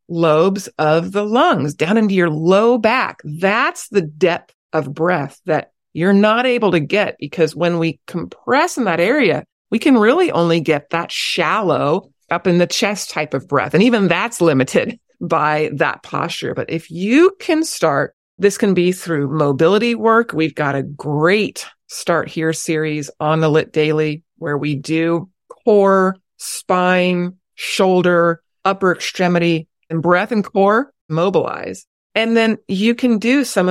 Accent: American